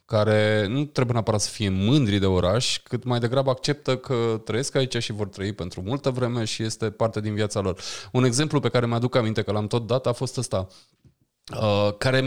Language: Romanian